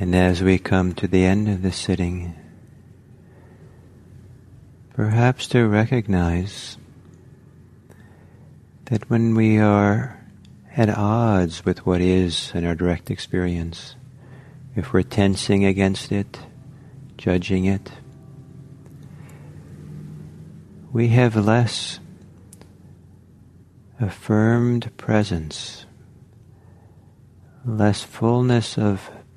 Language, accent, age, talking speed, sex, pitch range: English, American, 50-69, 85 wpm, male, 95-125 Hz